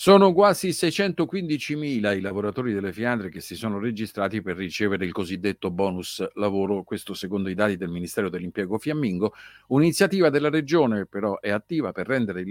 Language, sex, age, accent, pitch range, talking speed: Italian, male, 50-69, native, 100-135 Hz, 170 wpm